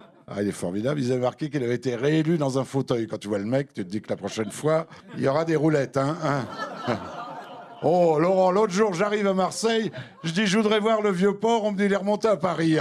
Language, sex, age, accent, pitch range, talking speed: French, male, 50-69, French, 165-250 Hz, 260 wpm